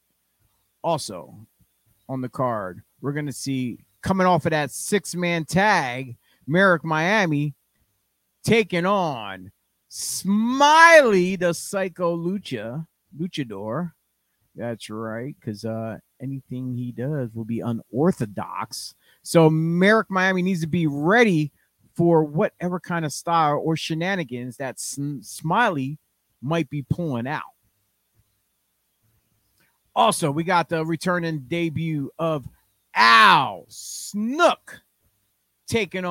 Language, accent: English, American